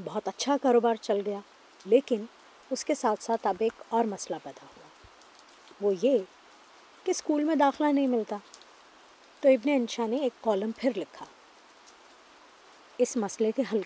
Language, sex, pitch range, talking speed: Urdu, female, 210-270 Hz, 155 wpm